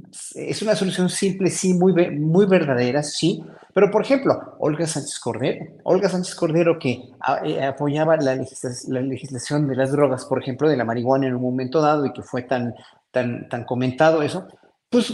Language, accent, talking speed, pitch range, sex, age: Spanish, Mexican, 180 wpm, 145-220 Hz, male, 40-59